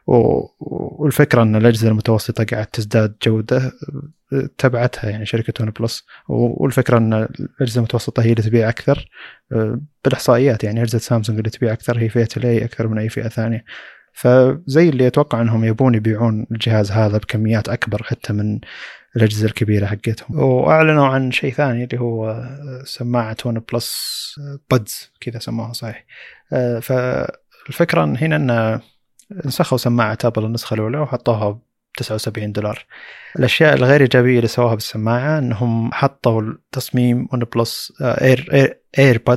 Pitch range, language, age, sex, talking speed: 110-125 Hz, Arabic, 20-39, male, 135 wpm